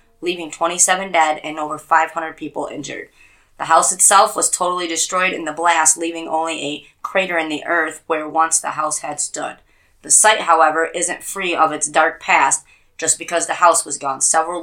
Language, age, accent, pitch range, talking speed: English, 20-39, American, 155-175 Hz, 190 wpm